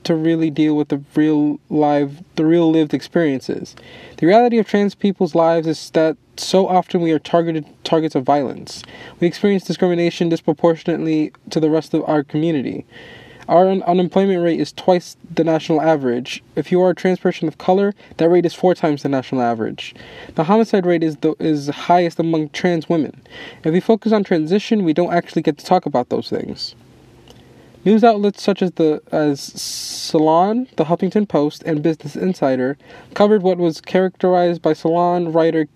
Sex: male